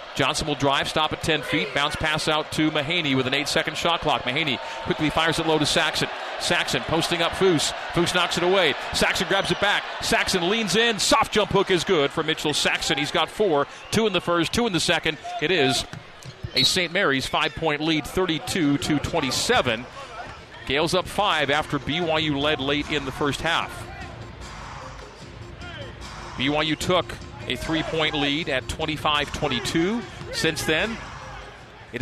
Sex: male